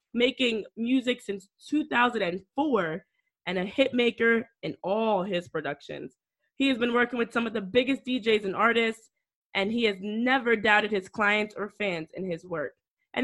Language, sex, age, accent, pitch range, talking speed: English, female, 20-39, American, 200-250 Hz, 165 wpm